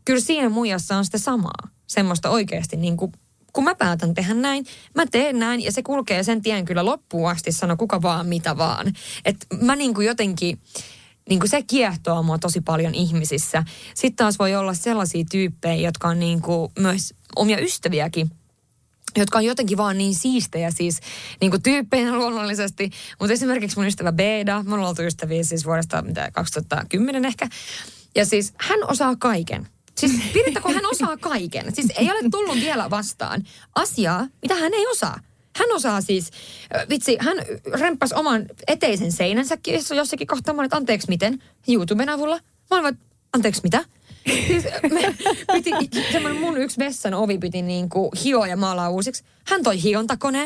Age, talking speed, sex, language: 20-39, 155 wpm, female, Finnish